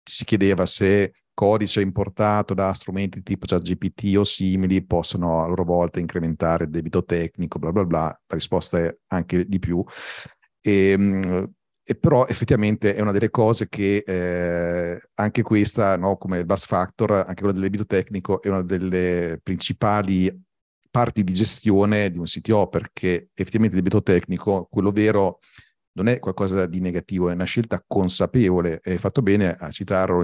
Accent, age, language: native, 40-59, Italian